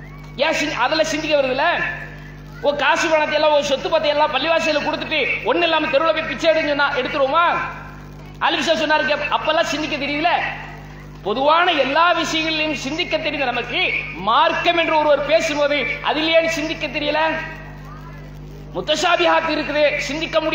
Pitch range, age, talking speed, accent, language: 285-320 Hz, 20-39, 80 wpm, Indian, English